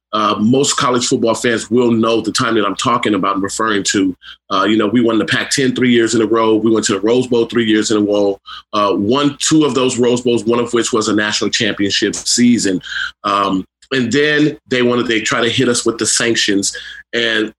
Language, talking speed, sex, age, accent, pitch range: English, 235 wpm, male, 30-49, American, 110-130 Hz